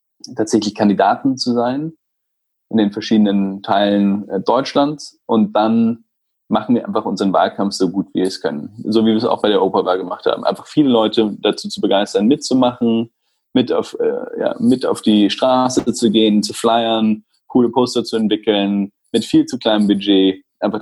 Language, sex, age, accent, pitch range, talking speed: German, male, 20-39, German, 95-120 Hz, 175 wpm